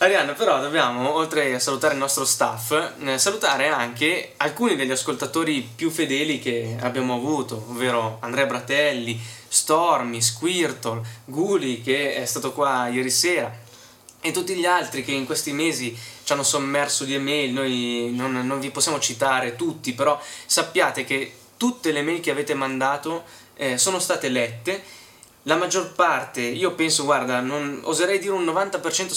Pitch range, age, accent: 125-155 Hz, 20-39, native